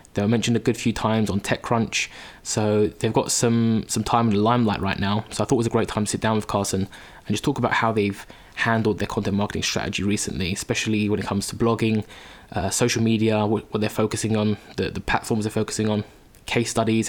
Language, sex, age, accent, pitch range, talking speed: English, male, 20-39, British, 105-115 Hz, 235 wpm